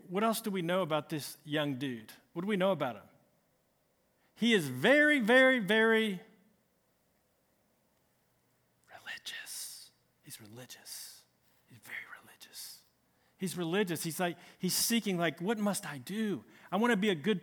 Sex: male